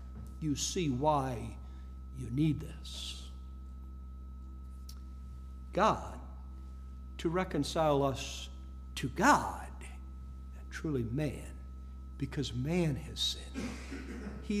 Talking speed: 80 wpm